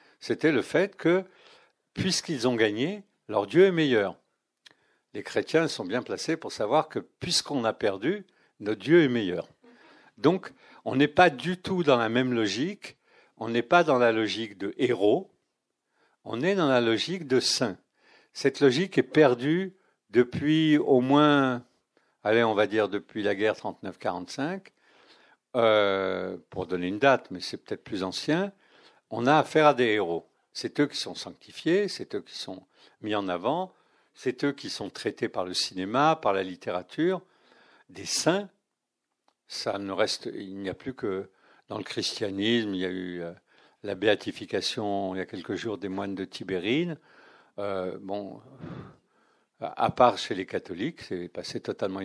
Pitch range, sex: 100-155 Hz, male